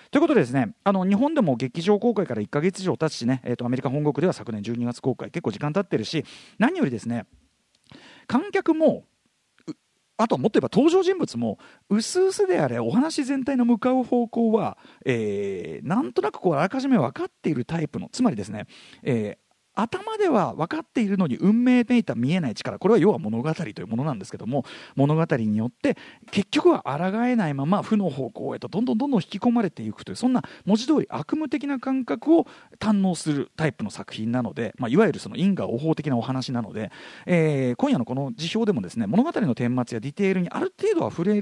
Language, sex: Japanese, male